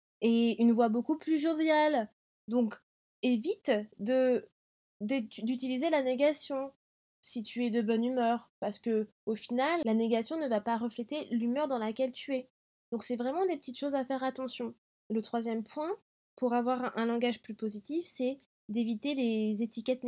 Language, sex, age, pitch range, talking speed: French, female, 20-39, 205-245 Hz, 165 wpm